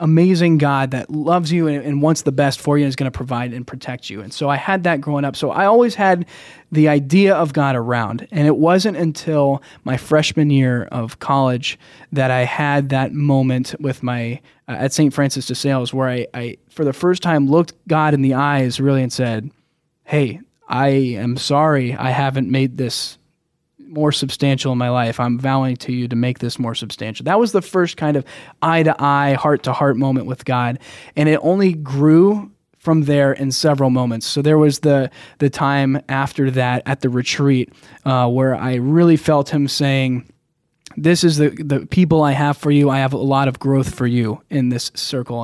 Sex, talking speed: male, 205 wpm